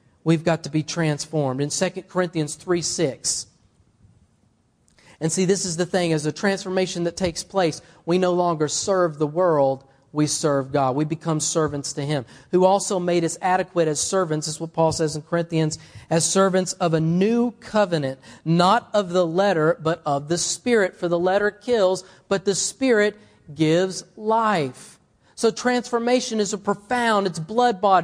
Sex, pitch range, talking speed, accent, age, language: male, 165-235 Hz, 170 wpm, American, 40-59, English